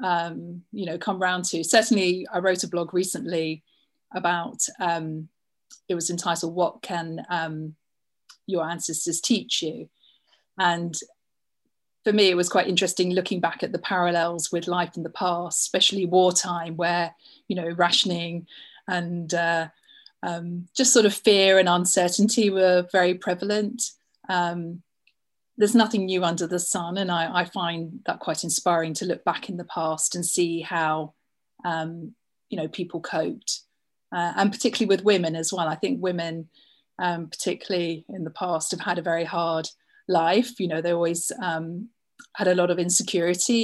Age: 30-49